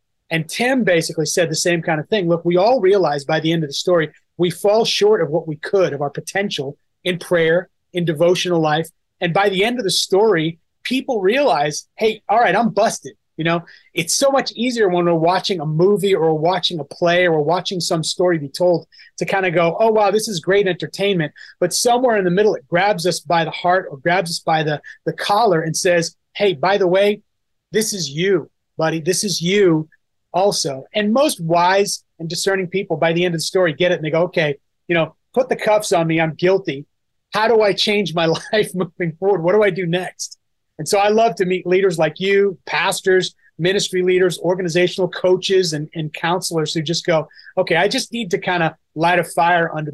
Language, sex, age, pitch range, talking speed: English, male, 30-49, 165-195 Hz, 220 wpm